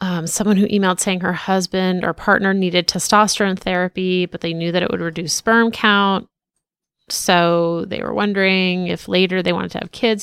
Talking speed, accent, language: 190 wpm, American, English